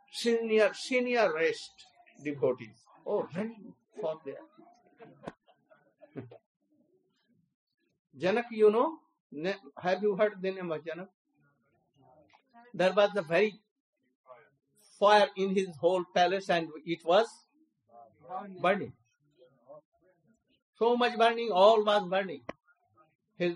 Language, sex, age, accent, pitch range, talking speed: English, male, 60-79, Indian, 150-215 Hz, 95 wpm